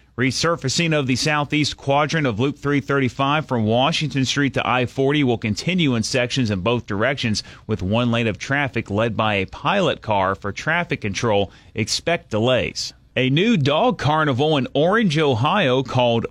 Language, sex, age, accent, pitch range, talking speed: English, male, 30-49, American, 115-155 Hz, 160 wpm